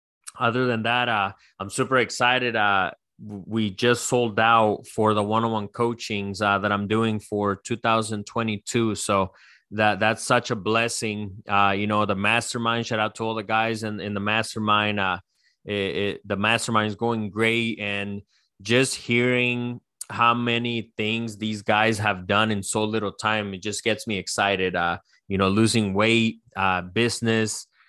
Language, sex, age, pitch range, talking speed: English, male, 20-39, 105-120 Hz, 160 wpm